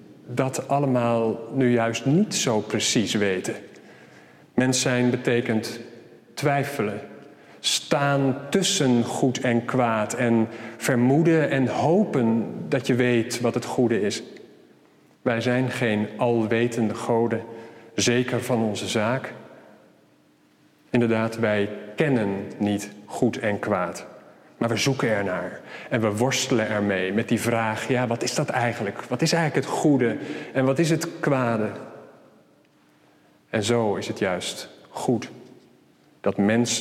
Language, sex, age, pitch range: Dutch, male, 40-59, 115-130 Hz